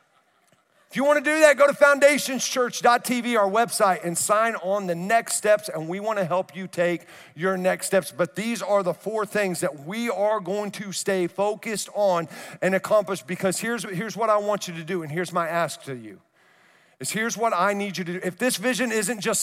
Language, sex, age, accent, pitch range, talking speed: English, male, 50-69, American, 185-240 Hz, 220 wpm